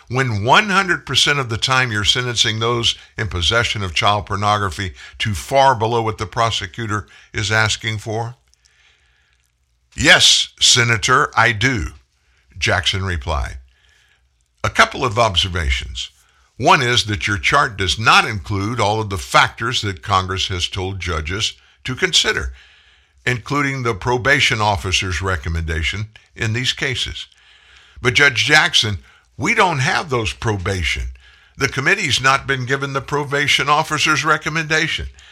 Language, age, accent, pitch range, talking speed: English, 60-79, American, 85-125 Hz, 130 wpm